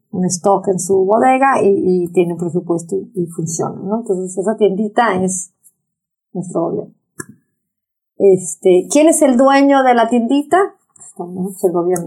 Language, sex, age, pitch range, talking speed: Spanish, female, 30-49, 185-245 Hz, 155 wpm